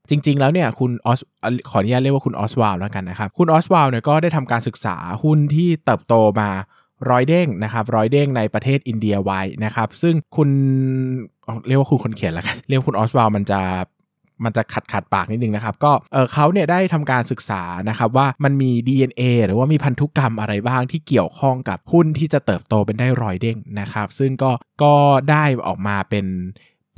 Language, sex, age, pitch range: Thai, male, 20-39, 110-140 Hz